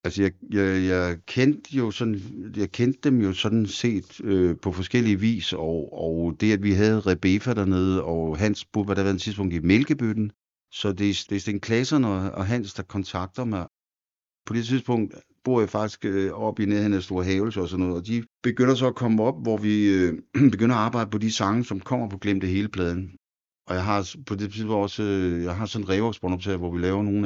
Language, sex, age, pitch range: Danish, male, 60-79, 95-110 Hz